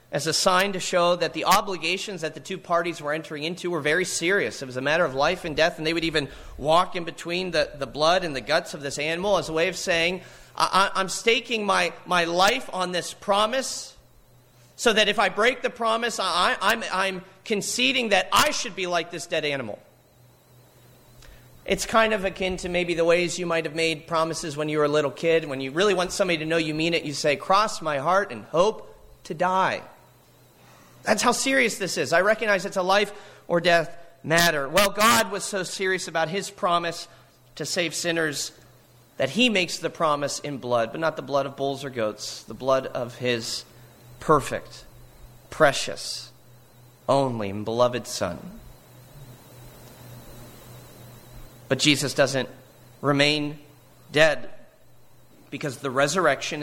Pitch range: 135-185 Hz